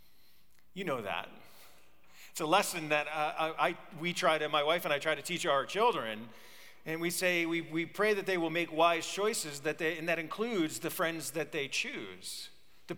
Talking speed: 205 wpm